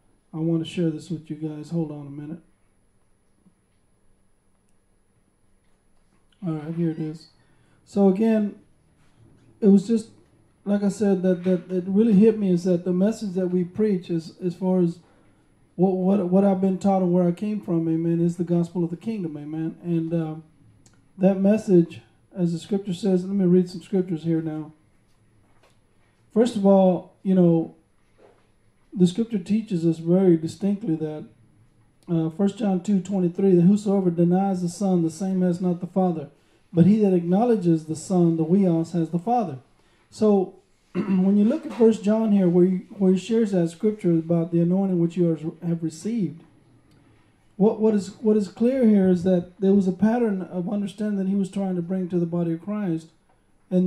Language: English